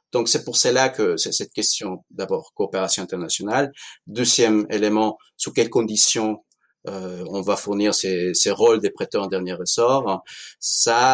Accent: French